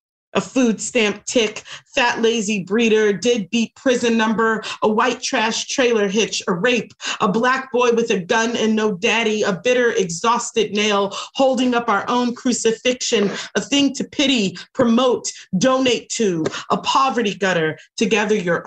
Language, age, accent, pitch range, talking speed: English, 40-59, American, 195-235 Hz, 160 wpm